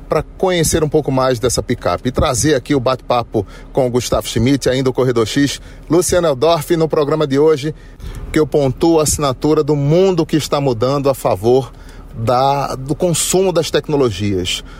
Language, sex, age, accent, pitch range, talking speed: Portuguese, male, 40-59, Brazilian, 110-140 Hz, 170 wpm